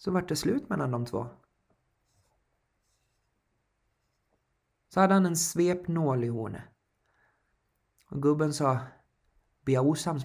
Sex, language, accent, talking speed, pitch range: male, Swedish, native, 115 wpm, 135-160 Hz